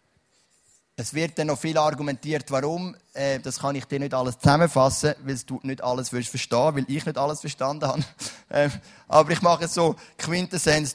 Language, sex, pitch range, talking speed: English, male, 130-175 Hz, 170 wpm